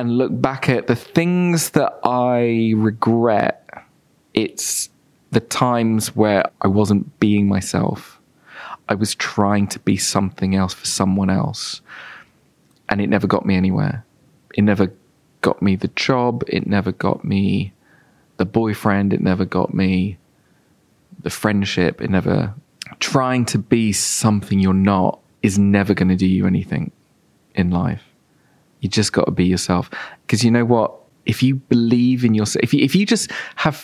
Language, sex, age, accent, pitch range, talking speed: English, male, 20-39, British, 100-125 Hz, 155 wpm